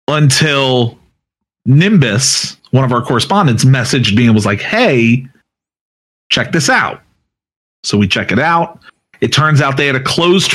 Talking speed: 155 wpm